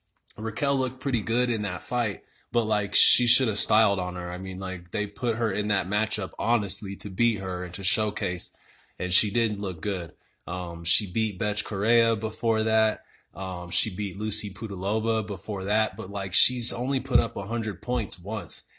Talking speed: 190 wpm